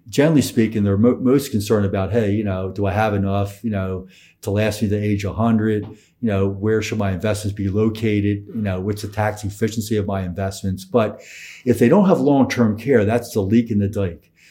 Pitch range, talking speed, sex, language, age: 100-115 Hz, 215 wpm, male, English, 50-69